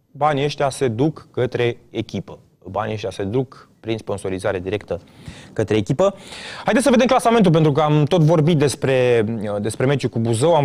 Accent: native